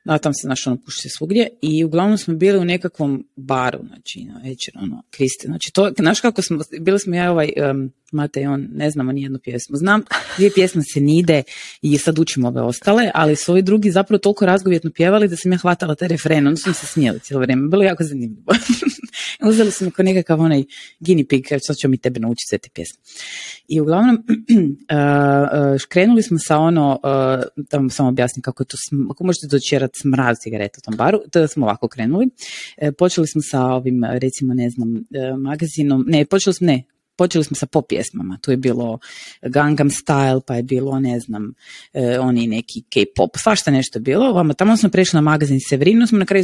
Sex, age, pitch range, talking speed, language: female, 30-49, 135-185 Hz, 180 wpm, Croatian